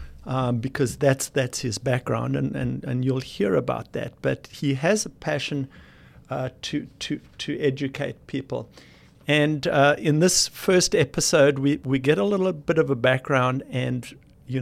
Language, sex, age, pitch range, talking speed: English, male, 50-69, 125-145 Hz, 170 wpm